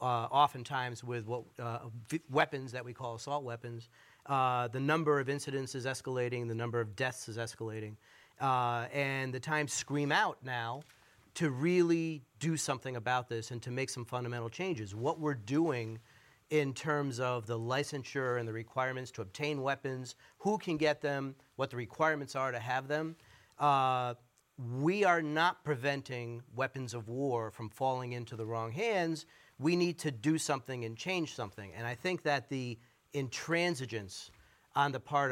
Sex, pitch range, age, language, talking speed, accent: male, 120-150 Hz, 40-59, English, 170 wpm, American